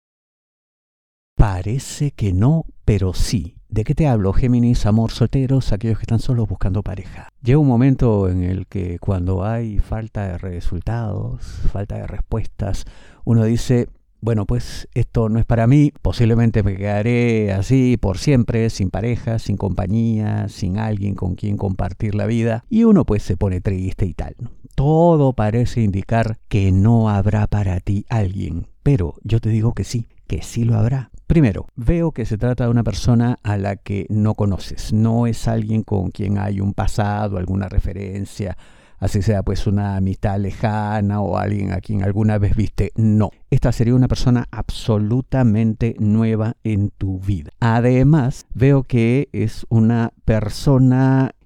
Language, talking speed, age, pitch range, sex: Spanish, 160 wpm, 50-69, 100-120 Hz, male